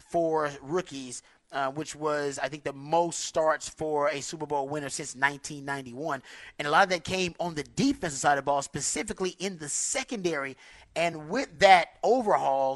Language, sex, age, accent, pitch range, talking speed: English, male, 30-49, American, 145-180 Hz, 180 wpm